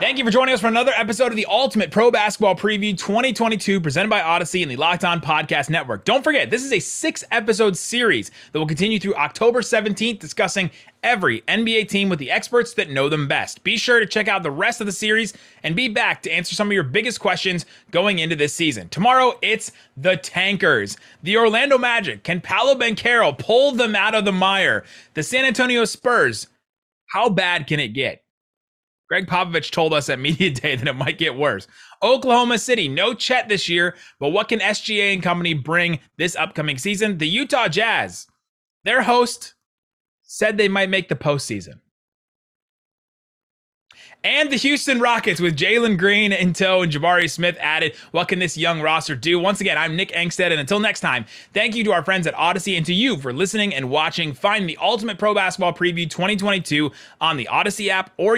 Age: 30-49